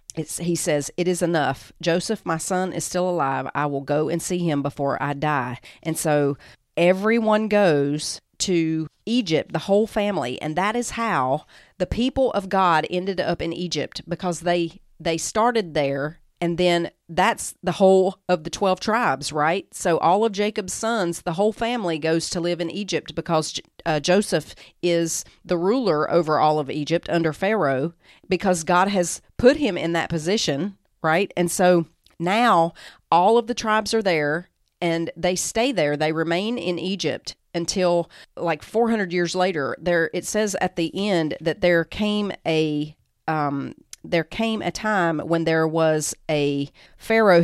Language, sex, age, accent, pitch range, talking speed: English, female, 40-59, American, 160-195 Hz, 165 wpm